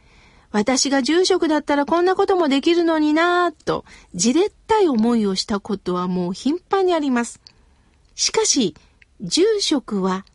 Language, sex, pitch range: Japanese, female, 230-335 Hz